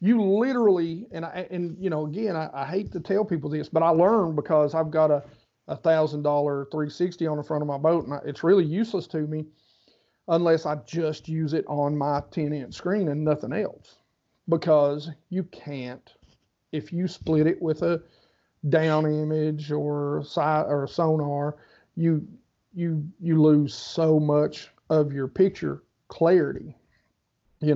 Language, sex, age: English, male, 40-59